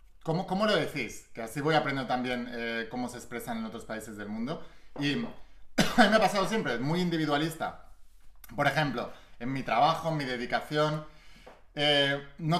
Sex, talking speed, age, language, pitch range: male, 170 wpm, 30-49, Spanish, 130-165 Hz